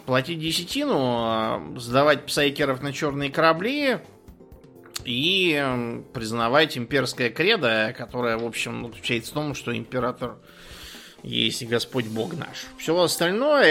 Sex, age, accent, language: male, 20-39, native, Russian